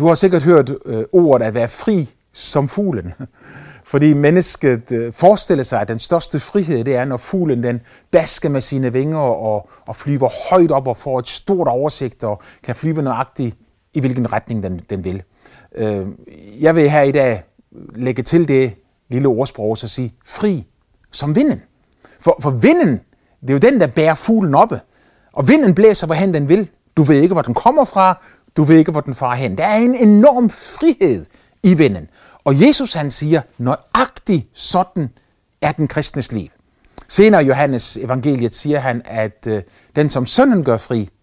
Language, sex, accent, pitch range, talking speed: Danish, male, native, 115-170 Hz, 185 wpm